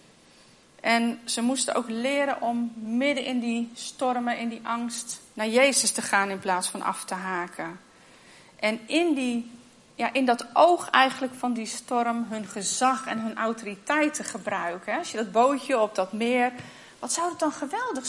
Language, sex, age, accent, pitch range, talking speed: Dutch, female, 40-59, Dutch, 225-275 Hz, 175 wpm